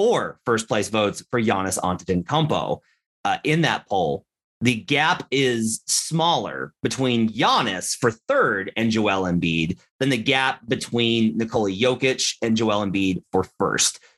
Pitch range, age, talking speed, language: 105-150 Hz, 30-49, 140 wpm, English